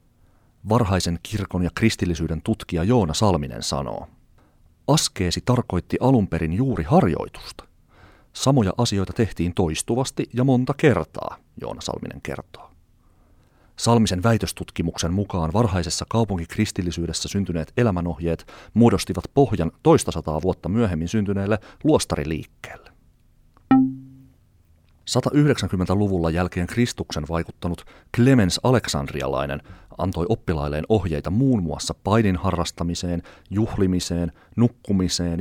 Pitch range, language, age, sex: 85-115 Hz, Finnish, 40-59, male